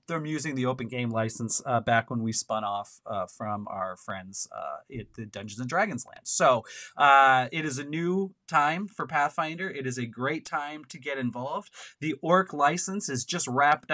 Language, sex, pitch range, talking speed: English, male, 125-165 Hz, 200 wpm